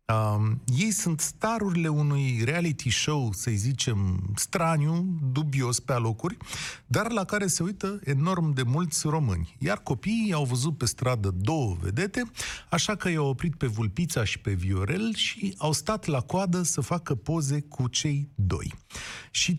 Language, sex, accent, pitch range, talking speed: Romanian, male, native, 115-175 Hz, 155 wpm